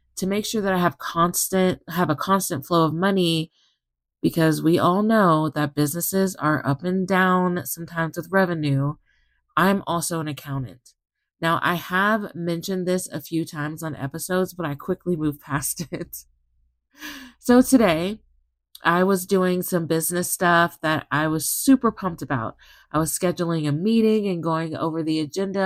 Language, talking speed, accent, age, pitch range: English, 165 wpm, American, 30-49, 145-185 Hz